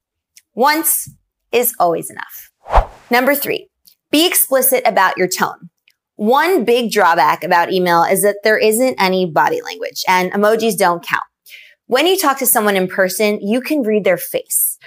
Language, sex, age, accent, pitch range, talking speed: English, female, 20-39, American, 190-270 Hz, 155 wpm